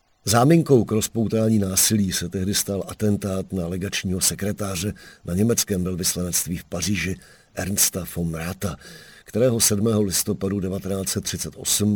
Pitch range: 90-105 Hz